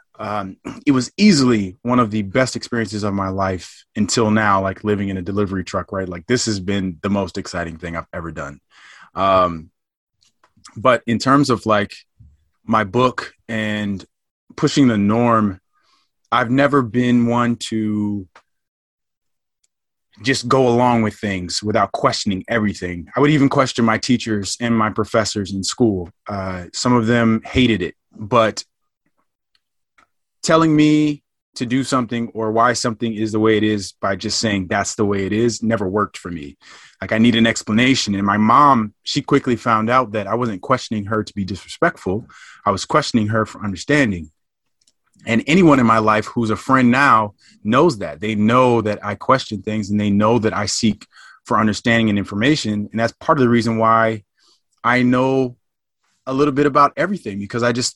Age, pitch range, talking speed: 20-39, 100-120 Hz, 175 wpm